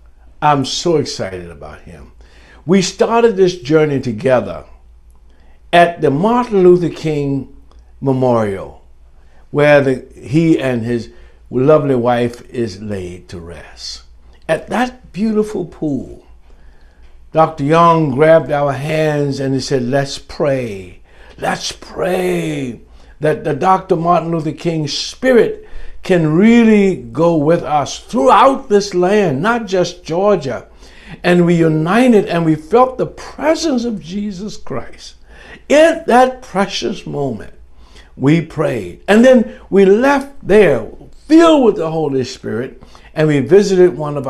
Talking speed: 125 wpm